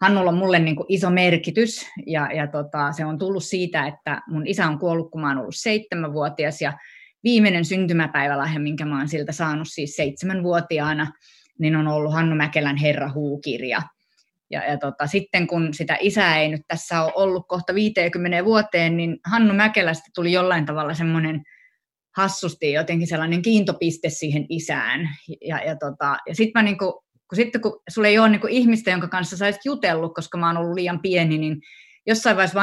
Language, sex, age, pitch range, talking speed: Finnish, female, 30-49, 155-195 Hz, 160 wpm